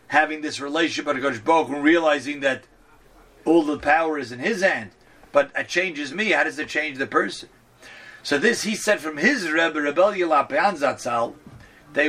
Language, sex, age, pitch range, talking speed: English, male, 50-69, 140-195 Hz, 180 wpm